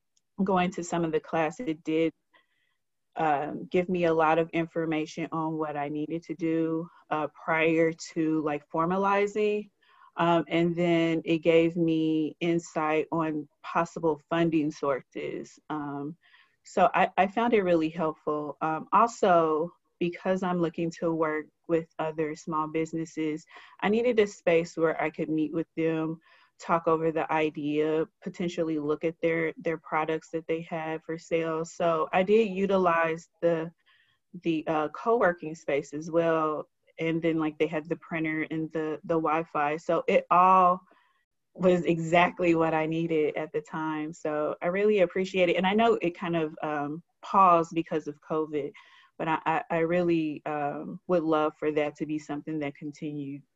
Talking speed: 160 wpm